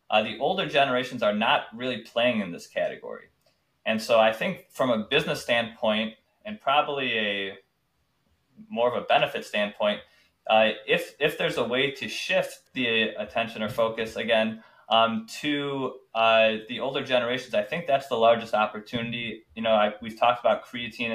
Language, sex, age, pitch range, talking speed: English, male, 20-39, 110-130 Hz, 165 wpm